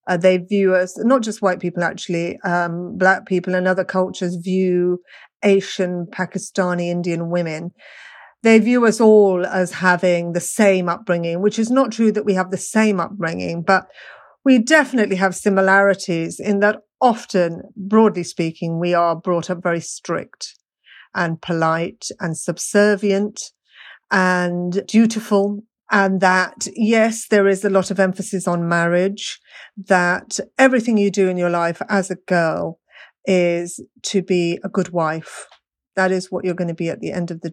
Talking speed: 160 wpm